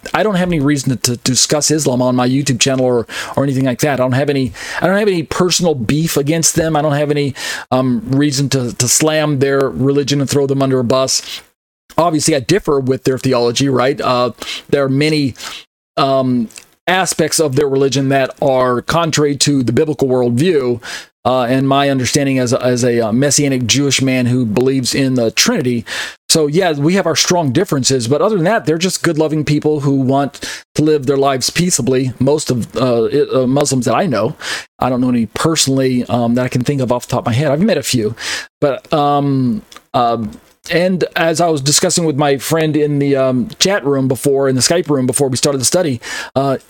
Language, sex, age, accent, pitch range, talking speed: English, male, 40-59, American, 130-155 Hz, 210 wpm